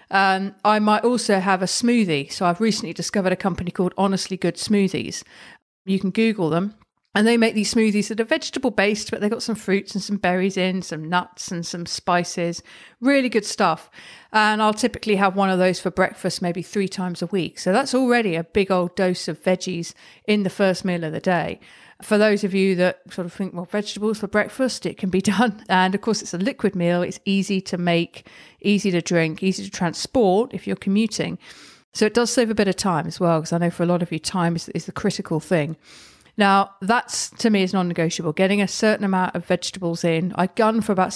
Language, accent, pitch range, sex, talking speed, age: English, British, 175-210 Hz, female, 225 wpm, 40-59